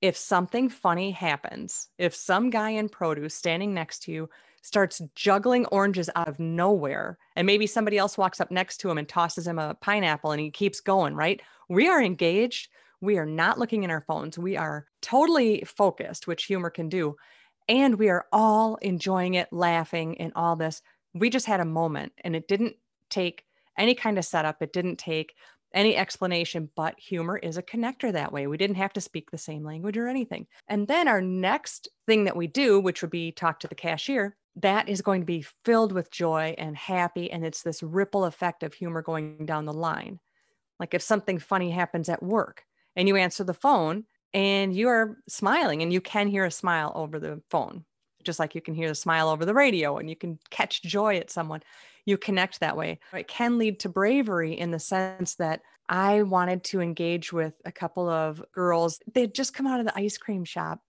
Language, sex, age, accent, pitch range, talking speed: English, female, 30-49, American, 165-205 Hz, 205 wpm